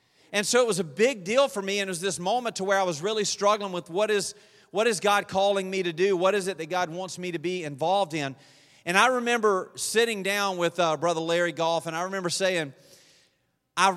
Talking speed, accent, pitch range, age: 240 wpm, American, 170-220 Hz, 40-59